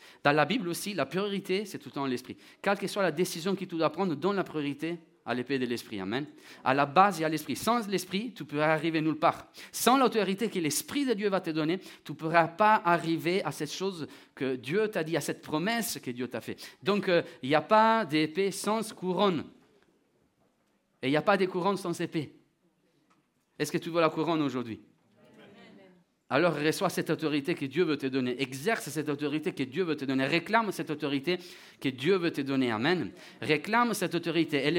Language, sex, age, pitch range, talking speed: French, male, 40-59, 145-190 Hz, 215 wpm